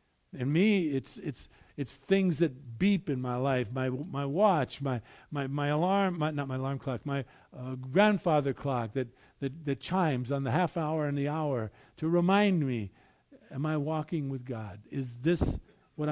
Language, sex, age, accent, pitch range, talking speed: English, male, 50-69, American, 125-165 Hz, 180 wpm